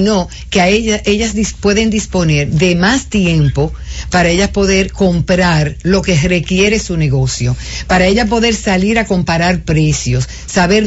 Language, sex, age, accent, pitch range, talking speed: English, female, 50-69, American, 160-205 Hz, 150 wpm